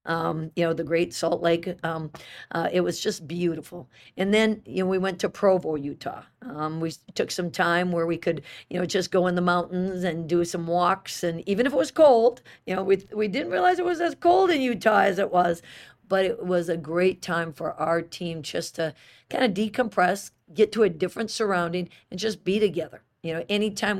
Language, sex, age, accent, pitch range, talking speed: English, female, 50-69, American, 165-200 Hz, 220 wpm